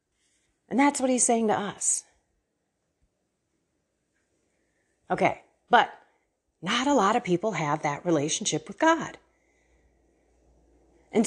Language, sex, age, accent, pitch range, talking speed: English, female, 40-59, American, 170-245 Hz, 105 wpm